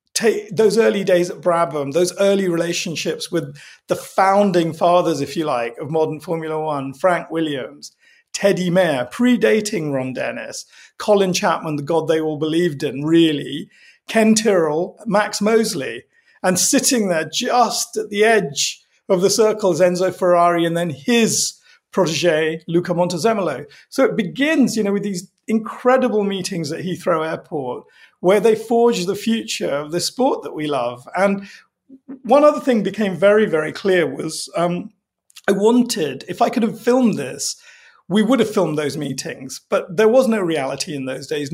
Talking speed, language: 160 wpm, English